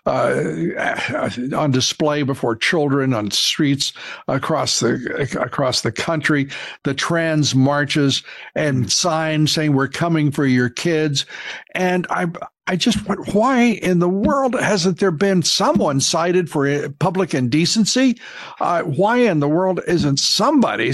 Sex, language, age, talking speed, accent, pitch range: male, English, 60-79, 130 wpm, American, 140-190 Hz